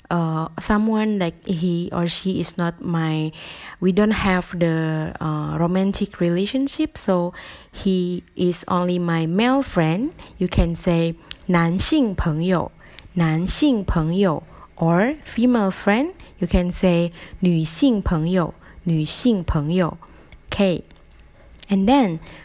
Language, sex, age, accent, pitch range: Chinese, female, 20-39, Malaysian, 165-215 Hz